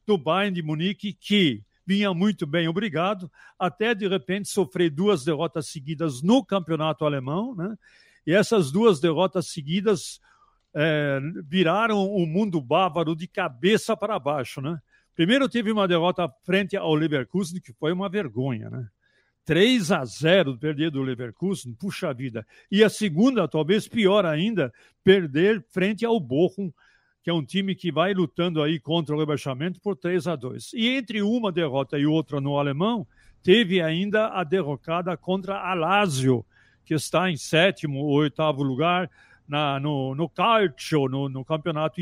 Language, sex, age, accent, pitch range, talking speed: Portuguese, male, 60-79, Brazilian, 150-195 Hz, 150 wpm